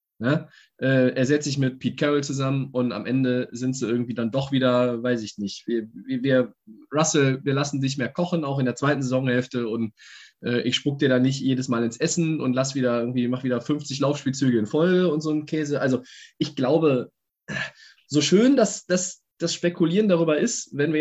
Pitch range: 130-160 Hz